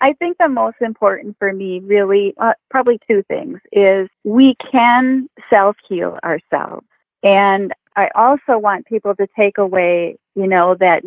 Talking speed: 150 wpm